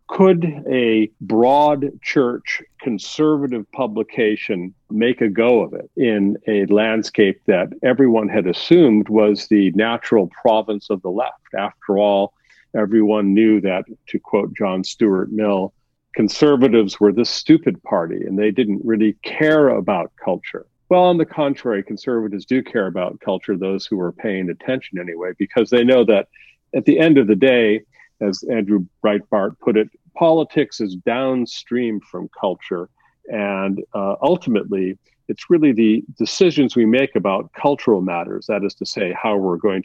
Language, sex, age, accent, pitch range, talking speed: English, male, 50-69, American, 100-135 Hz, 150 wpm